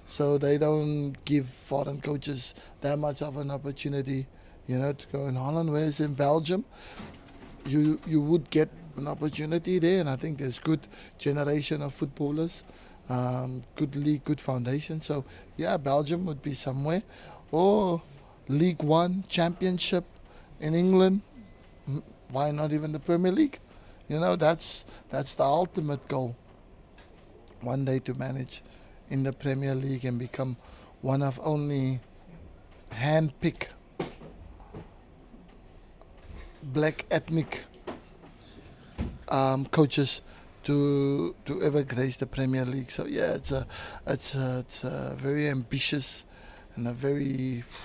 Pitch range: 130-155 Hz